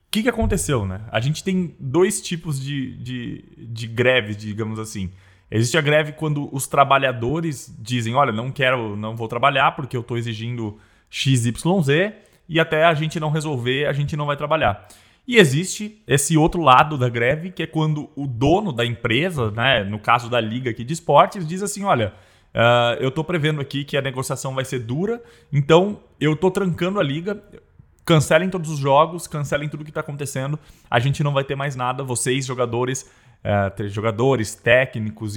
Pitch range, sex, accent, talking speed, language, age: 115-155 Hz, male, Brazilian, 185 wpm, Portuguese, 20-39